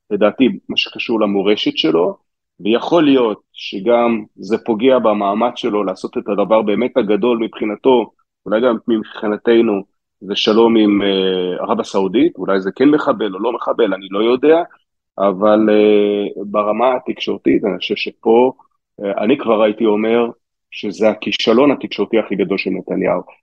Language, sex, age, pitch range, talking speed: Hebrew, male, 40-59, 105-140 Hz, 145 wpm